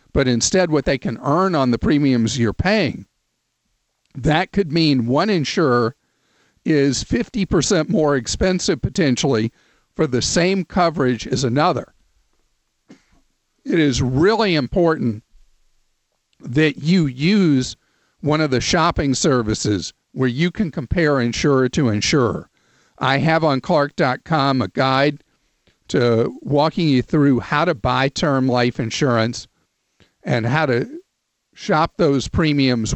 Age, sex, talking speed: 50-69, male, 125 wpm